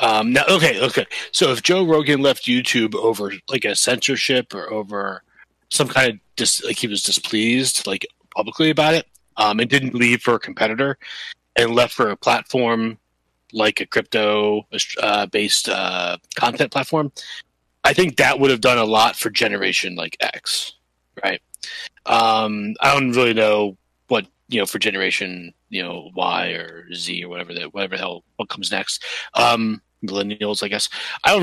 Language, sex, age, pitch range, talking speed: English, male, 30-49, 100-125 Hz, 175 wpm